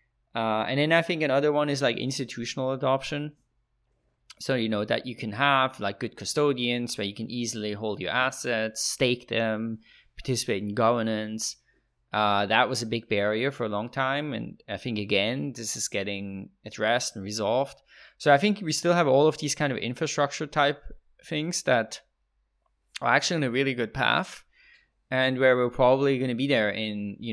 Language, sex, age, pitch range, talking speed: English, male, 20-39, 105-135 Hz, 185 wpm